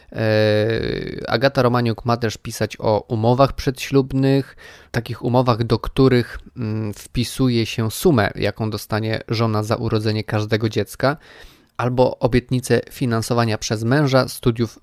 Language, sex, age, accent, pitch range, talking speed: Polish, male, 20-39, native, 110-130 Hz, 115 wpm